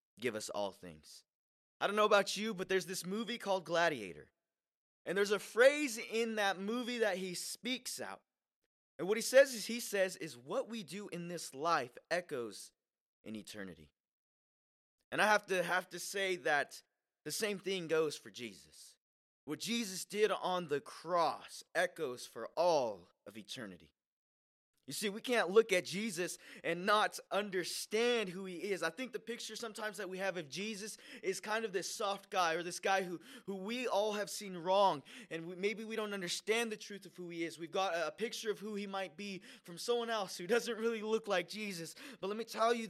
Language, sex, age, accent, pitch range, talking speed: English, male, 20-39, American, 175-220 Hz, 200 wpm